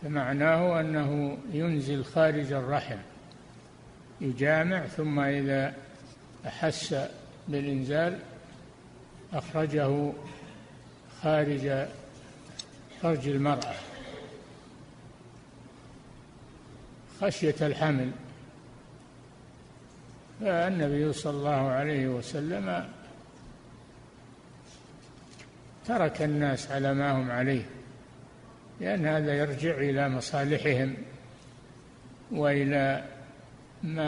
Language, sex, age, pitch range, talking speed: Arabic, male, 60-79, 135-155 Hz, 60 wpm